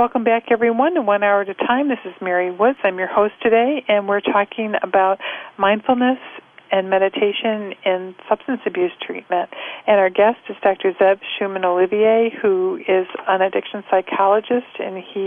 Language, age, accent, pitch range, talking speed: English, 50-69, American, 190-230 Hz, 165 wpm